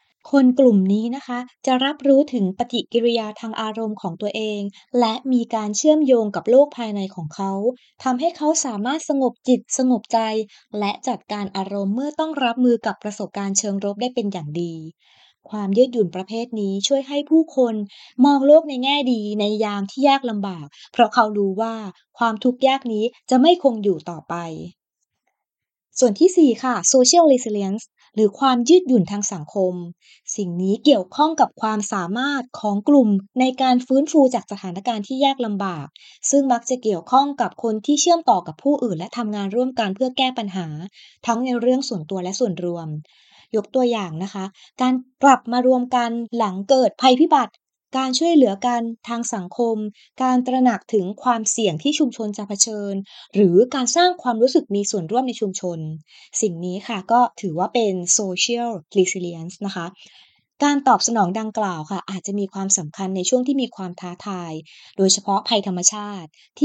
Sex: female